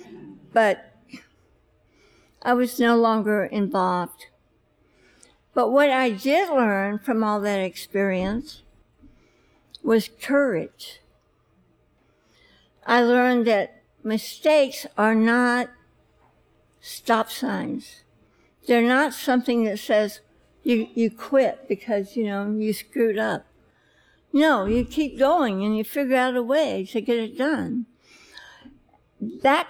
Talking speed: 110 wpm